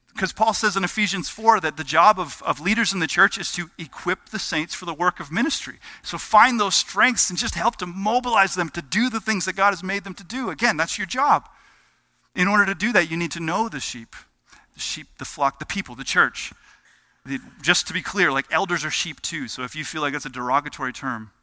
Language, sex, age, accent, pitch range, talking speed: English, male, 40-59, American, 130-180 Hz, 245 wpm